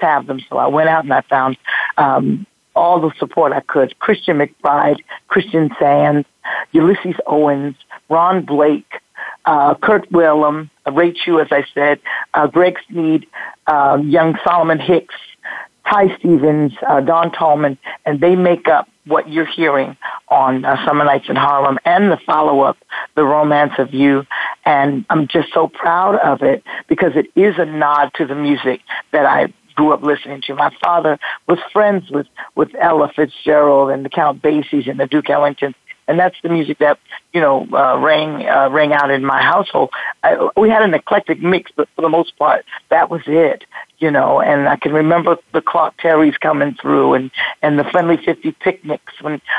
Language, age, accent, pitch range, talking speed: English, 50-69, American, 145-170 Hz, 180 wpm